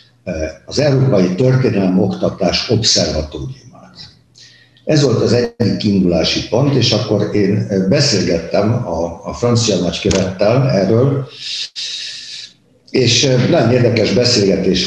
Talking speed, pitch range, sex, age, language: 95 wpm, 95-125 Hz, male, 60-79, Hungarian